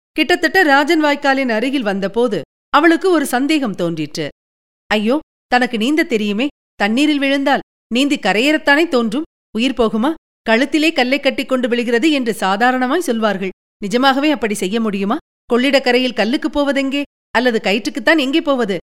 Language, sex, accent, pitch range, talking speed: Tamil, female, native, 210-285 Hz, 125 wpm